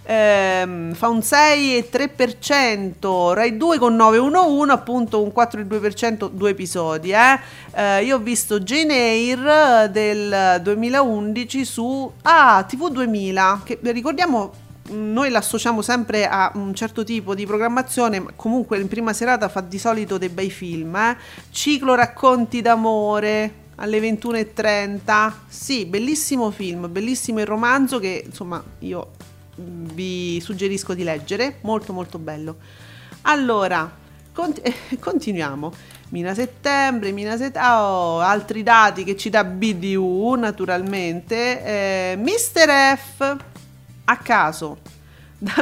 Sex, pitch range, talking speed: female, 195-250 Hz, 115 wpm